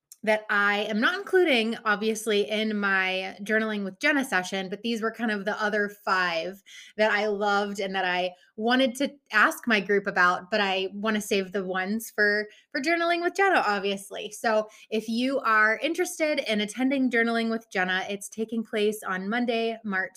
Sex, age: female, 20-39